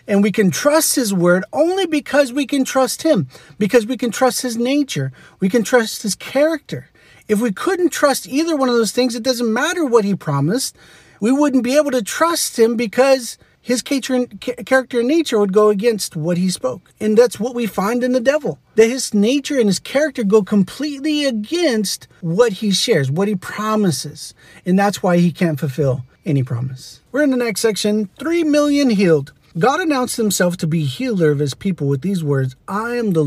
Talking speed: 200 wpm